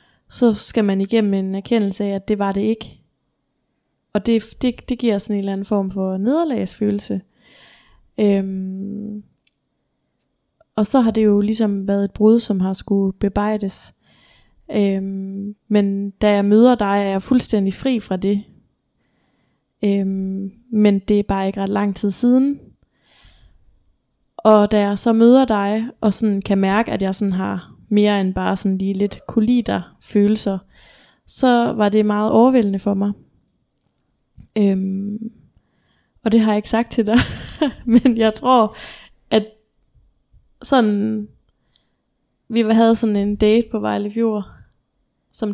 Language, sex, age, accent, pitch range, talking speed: Danish, female, 20-39, native, 200-225 Hz, 145 wpm